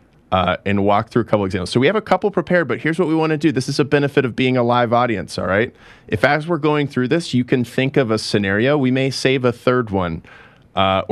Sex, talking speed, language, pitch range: male, 270 wpm, English, 95-130 Hz